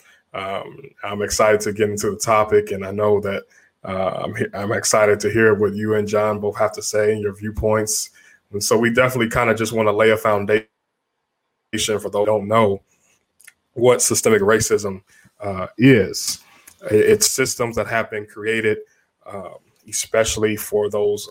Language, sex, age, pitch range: English, male, 20-39, 105-110 Hz